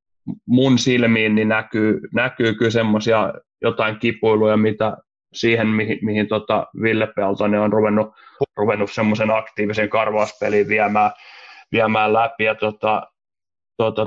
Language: Finnish